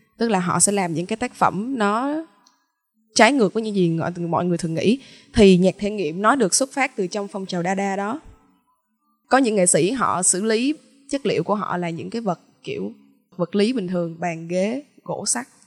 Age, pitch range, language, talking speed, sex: 20-39, 180-220 Hz, Vietnamese, 220 wpm, female